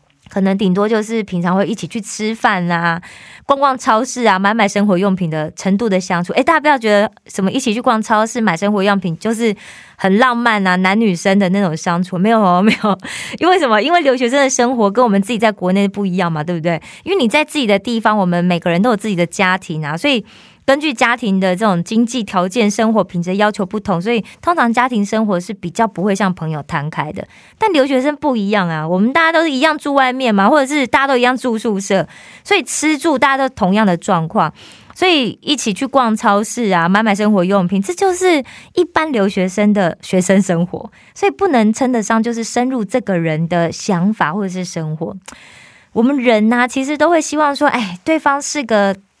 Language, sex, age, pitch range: Korean, female, 20-39, 190-255 Hz